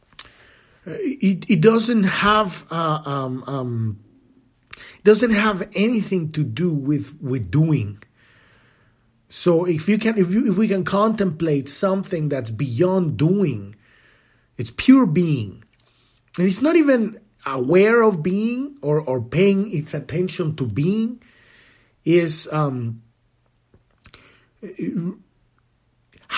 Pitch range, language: 125-185 Hz, English